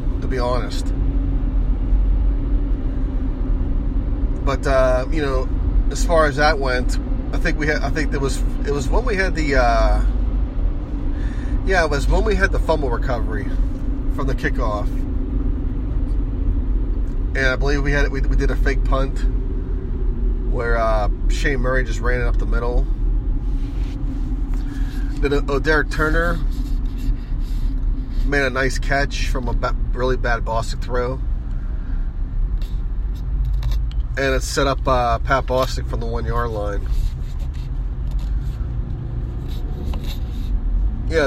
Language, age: English, 30-49